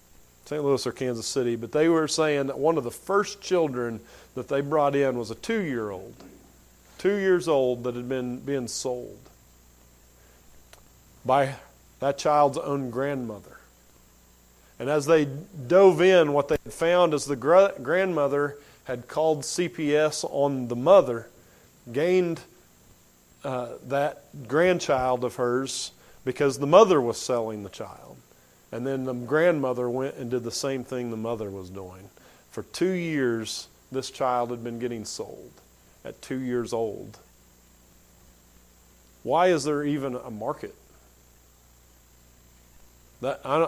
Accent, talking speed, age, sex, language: American, 135 wpm, 40-59, male, English